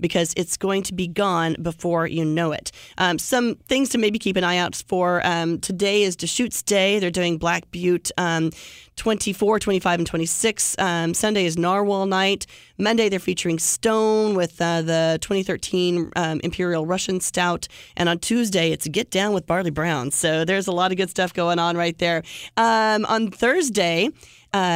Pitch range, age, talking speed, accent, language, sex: 165-205 Hz, 30-49, 180 wpm, American, English, female